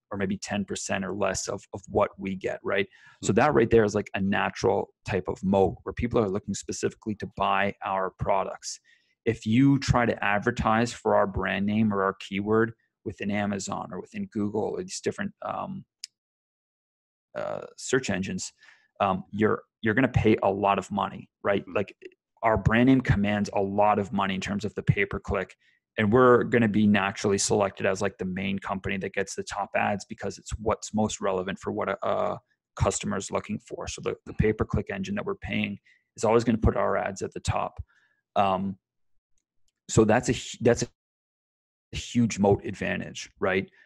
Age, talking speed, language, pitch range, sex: 30-49, 190 wpm, English, 100-120 Hz, male